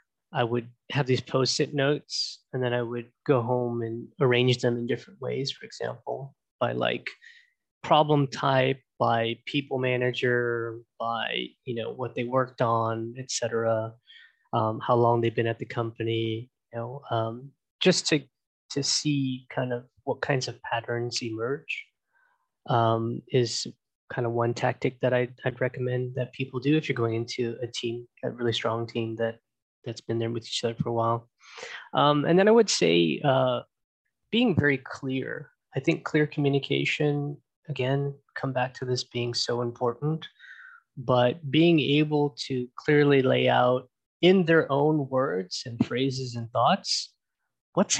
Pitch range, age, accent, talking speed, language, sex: 120-140 Hz, 20-39, American, 160 wpm, English, male